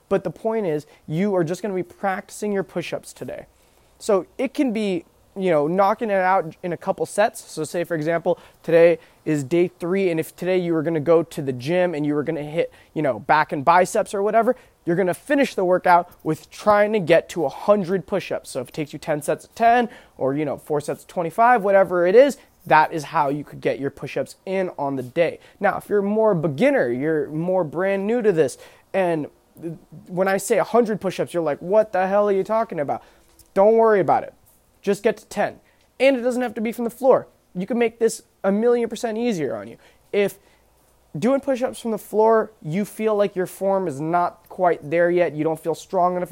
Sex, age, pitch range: male, 20-39, 170-220 Hz